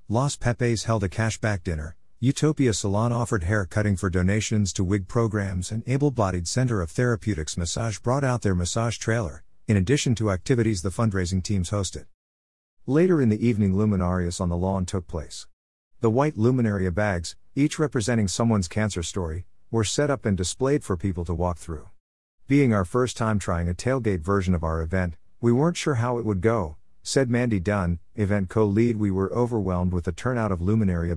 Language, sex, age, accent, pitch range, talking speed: English, male, 50-69, American, 90-115 Hz, 180 wpm